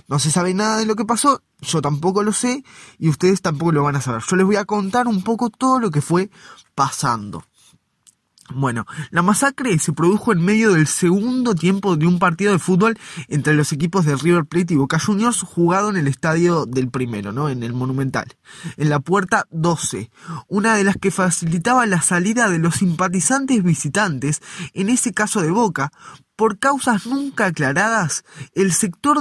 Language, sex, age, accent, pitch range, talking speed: Spanish, male, 20-39, Argentinian, 150-205 Hz, 185 wpm